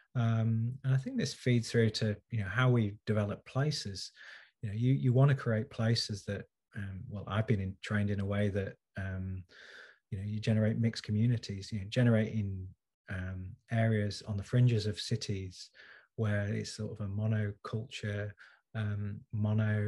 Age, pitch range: 30-49, 100-115 Hz